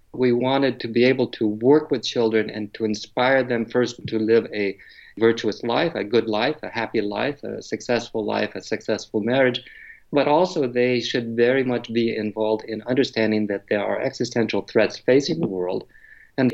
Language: English